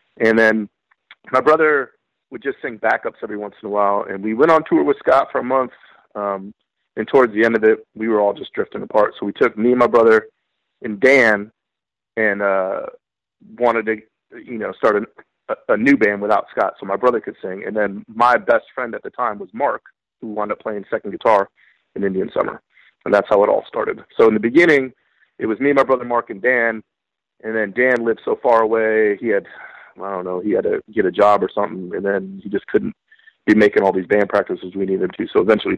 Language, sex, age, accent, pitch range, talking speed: English, male, 30-49, American, 105-130 Hz, 230 wpm